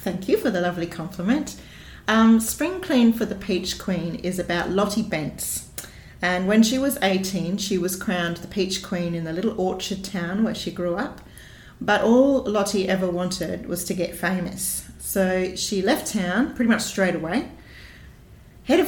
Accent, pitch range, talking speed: Australian, 170-205 Hz, 175 wpm